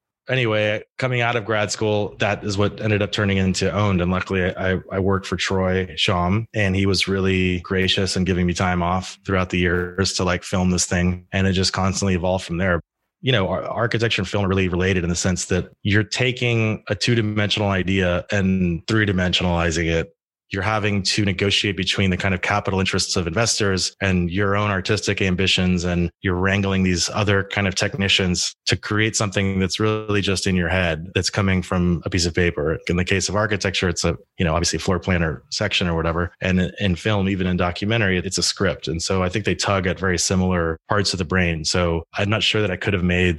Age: 20-39